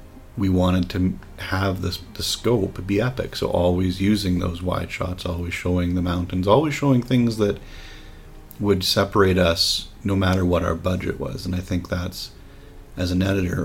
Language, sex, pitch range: English, male, 90-105 Hz